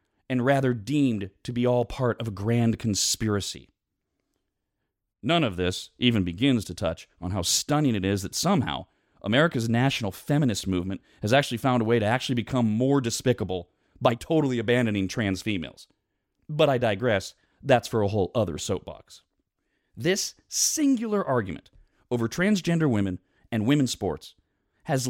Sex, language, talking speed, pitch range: male, English, 150 wpm, 100-155 Hz